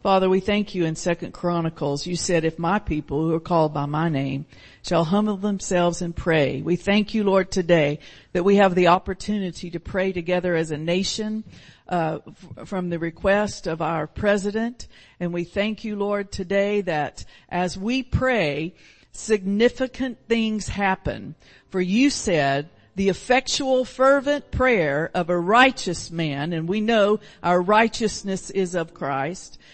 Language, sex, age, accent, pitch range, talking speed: English, female, 50-69, American, 170-225 Hz, 160 wpm